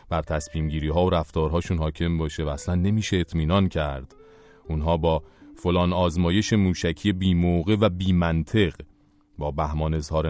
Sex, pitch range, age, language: male, 80-95 Hz, 40-59, English